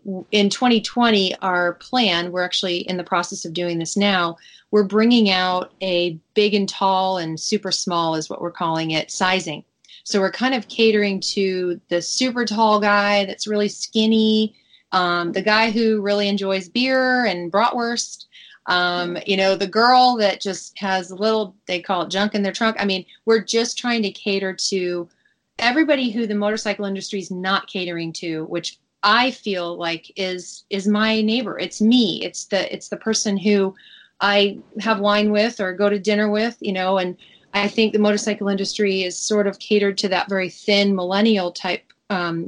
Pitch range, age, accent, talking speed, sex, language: 185-215 Hz, 30-49, American, 180 wpm, female, English